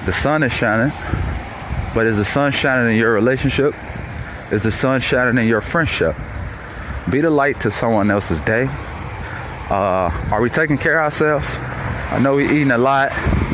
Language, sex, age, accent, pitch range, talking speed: English, male, 20-39, American, 95-130 Hz, 175 wpm